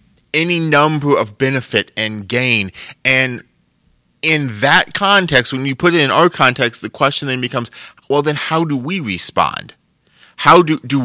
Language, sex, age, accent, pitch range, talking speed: English, male, 30-49, American, 125-155 Hz, 165 wpm